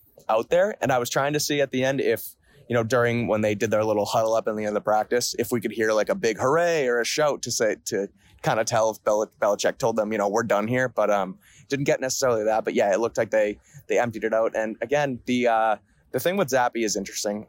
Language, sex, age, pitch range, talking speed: English, male, 20-39, 105-120 Hz, 280 wpm